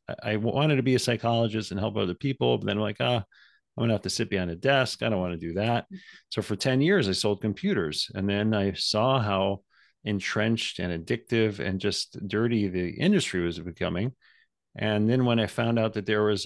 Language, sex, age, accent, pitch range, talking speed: English, male, 40-59, American, 95-120 Hz, 220 wpm